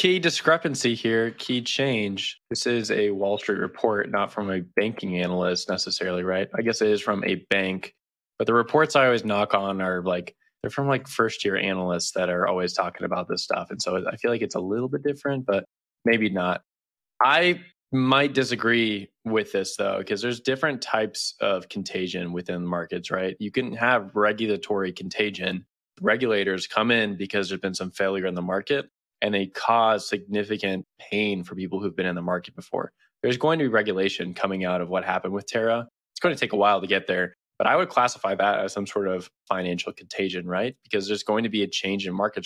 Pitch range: 95-115 Hz